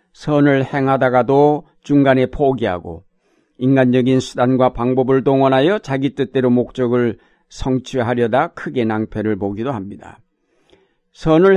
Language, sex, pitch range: Korean, male, 125-150 Hz